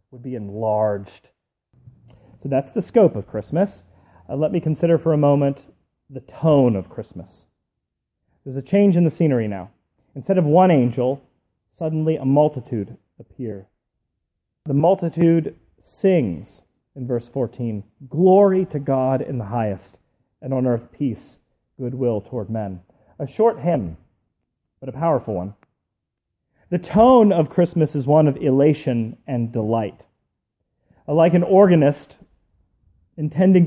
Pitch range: 110-155 Hz